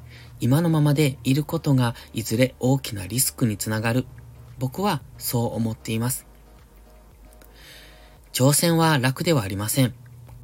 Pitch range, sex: 110-145 Hz, male